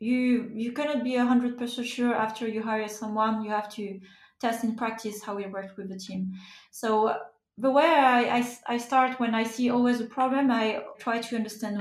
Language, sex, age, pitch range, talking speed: English, female, 20-39, 215-245 Hz, 200 wpm